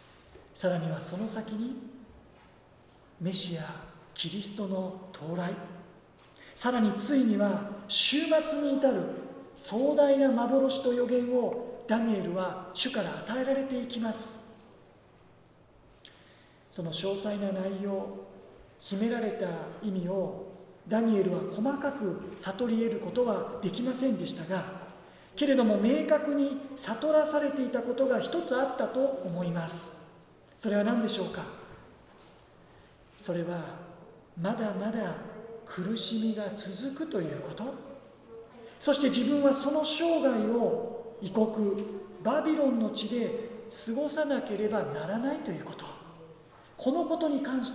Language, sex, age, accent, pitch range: Japanese, male, 40-59, native, 185-260 Hz